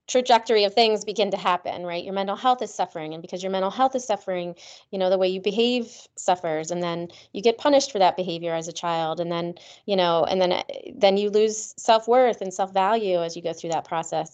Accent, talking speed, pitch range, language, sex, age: American, 240 wpm, 175-215 Hz, English, female, 20-39